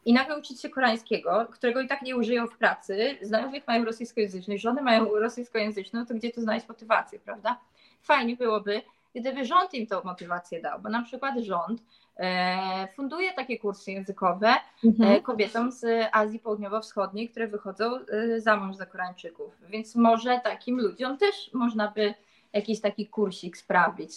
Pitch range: 200-245 Hz